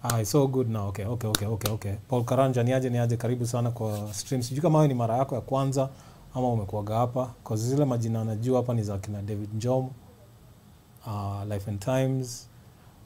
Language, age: English, 30-49